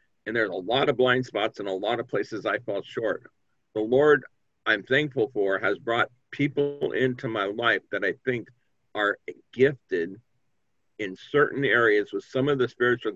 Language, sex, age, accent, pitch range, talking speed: English, male, 50-69, American, 110-135 Hz, 180 wpm